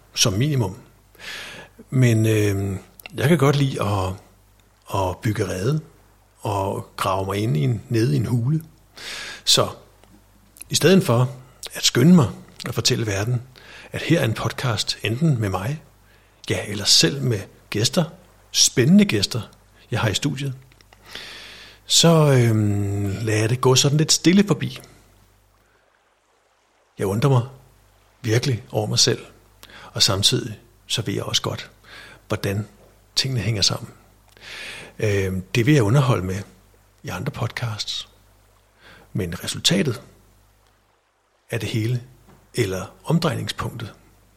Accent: native